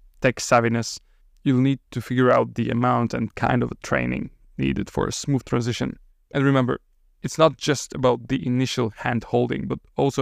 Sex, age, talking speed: male, 20-39, 170 wpm